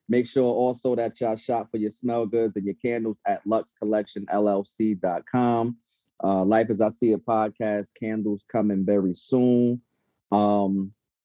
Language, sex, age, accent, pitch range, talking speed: English, male, 30-49, American, 105-135 Hz, 140 wpm